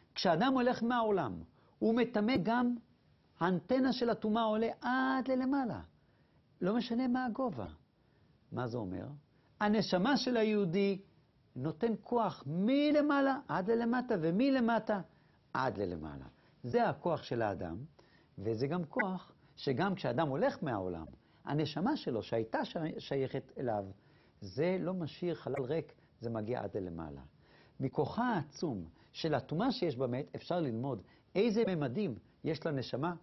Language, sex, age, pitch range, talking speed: Hebrew, male, 60-79, 140-235 Hz, 120 wpm